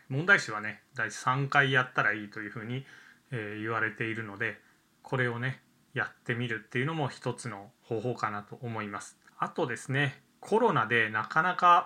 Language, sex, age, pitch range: Japanese, male, 20-39, 120-150 Hz